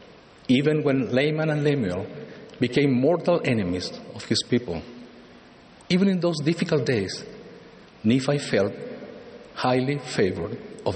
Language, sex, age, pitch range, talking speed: English, male, 60-79, 125-165 Hz, 115 wpm